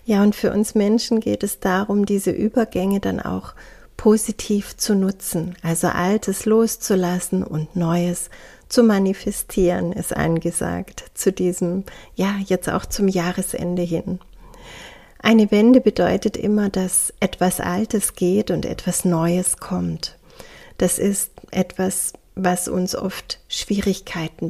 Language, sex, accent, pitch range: German, female, German, 175-215 Hz